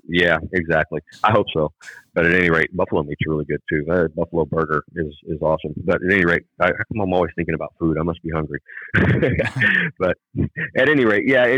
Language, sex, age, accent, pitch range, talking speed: English, male, 40-59, American, 80-90 Hz, 195 wpm